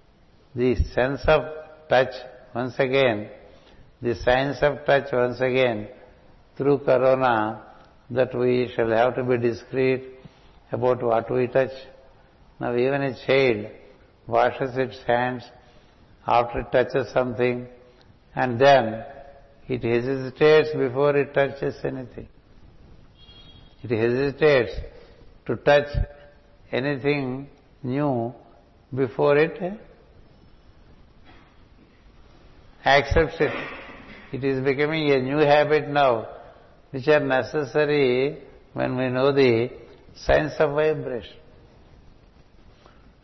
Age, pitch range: 60-79, 125-145 Hz